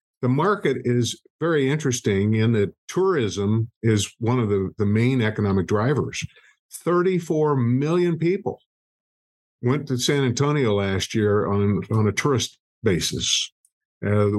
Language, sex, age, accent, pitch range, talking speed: English, male, 50-69, American, 105-125 Hz, 130 wpm